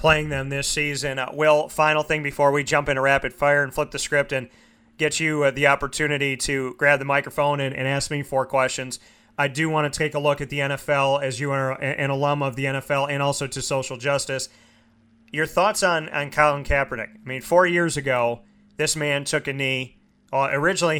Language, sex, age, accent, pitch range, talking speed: English, male, 30-49, American, 135-150 Hz, 215 wpm